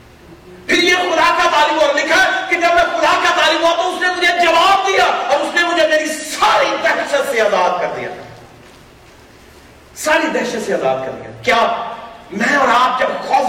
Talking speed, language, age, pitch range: 205 wpm, Urdu, 40-59, 250-320 Hz